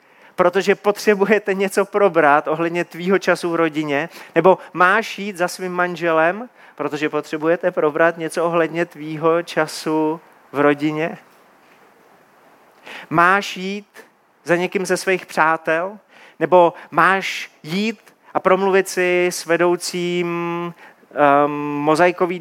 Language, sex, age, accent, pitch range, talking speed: Czech, male, 30-49, native, 165-205 Hz, 105 wpm